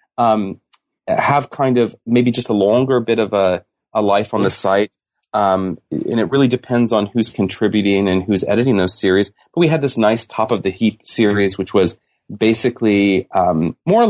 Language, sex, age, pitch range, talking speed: English, male, 30-49, 90-120 Hz, 190 wpm